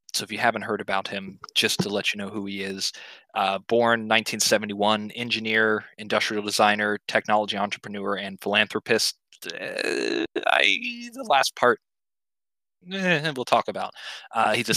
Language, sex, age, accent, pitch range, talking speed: English, male, 20-39, American, 100-120 Hz, 150 wpm